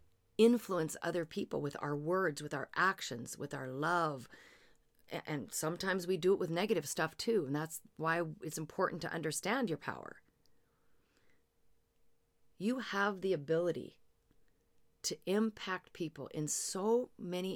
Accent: American